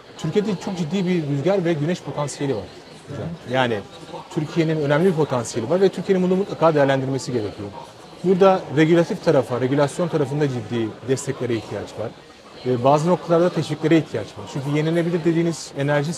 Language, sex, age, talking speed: Turkish, male, 40-59, 145 wpm